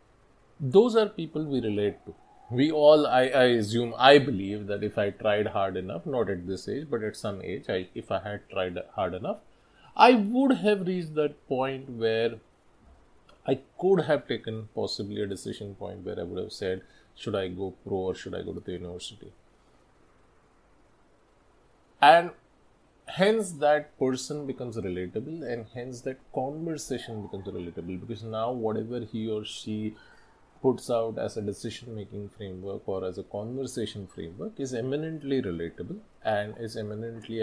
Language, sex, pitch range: English, male, 100-130 Hz